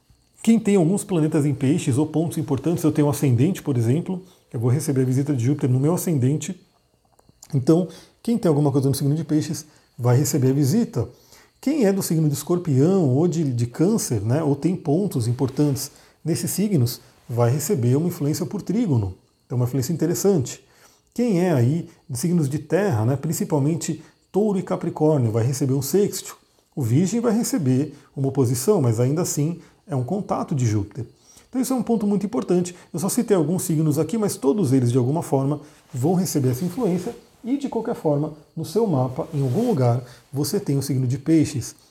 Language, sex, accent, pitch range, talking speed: Portuguese, male, Brazilian, 135-180 Hz, 190 wpm